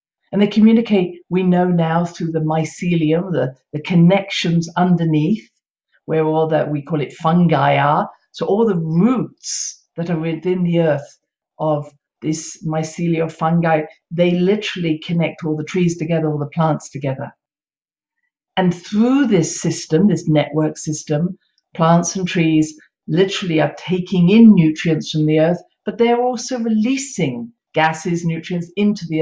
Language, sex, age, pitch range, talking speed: English, female, 50-69, 160-205 Hz, 145 wpm